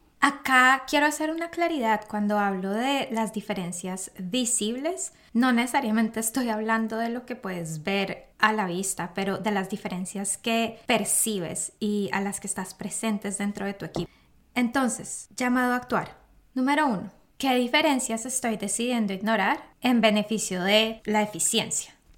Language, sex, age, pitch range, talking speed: English, female, 10-29, 205-245 Hz, 150 wpm